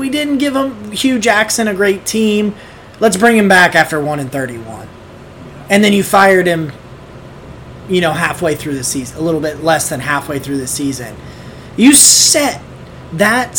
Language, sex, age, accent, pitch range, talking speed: English, male, 30-49, American, 155-210 Hz, 170 wpm